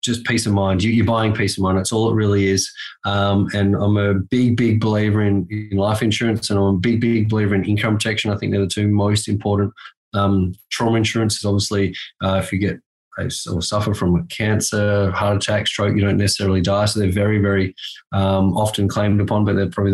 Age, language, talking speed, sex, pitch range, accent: 20-39, English, 215 wpm, male, 100-120 Hz, Australian